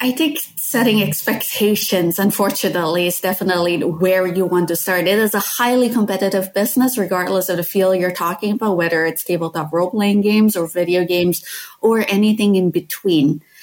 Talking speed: 165 wpm